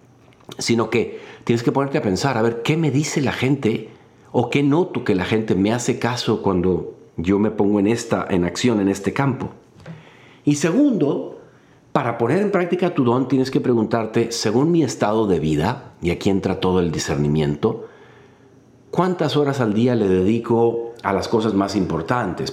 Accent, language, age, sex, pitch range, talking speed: Mexican, Spanish, 50-69, male, 100-140 Hz, 180 wpm